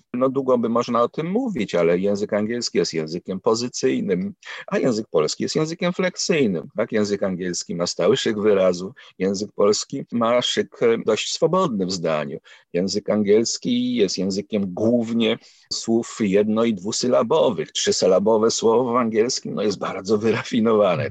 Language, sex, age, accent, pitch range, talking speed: Polish, male, 50-69, native, 100-145 Hz, 145 wpm